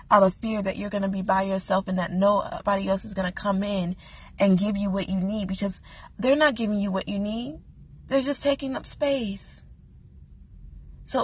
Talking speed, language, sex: 210 wpm, English, female